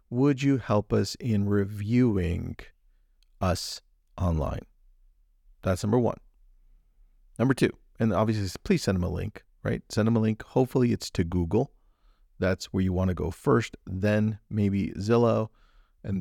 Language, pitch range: English, 95-120 Hz